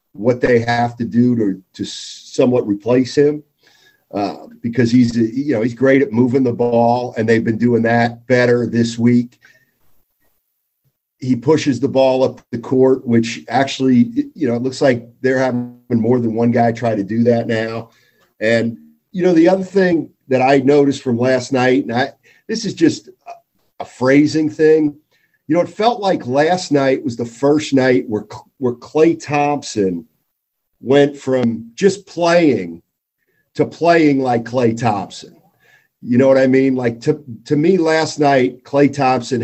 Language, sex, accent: English, male, American